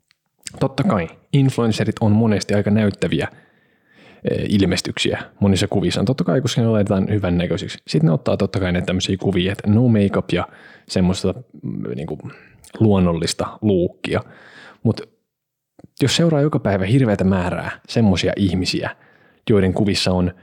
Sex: male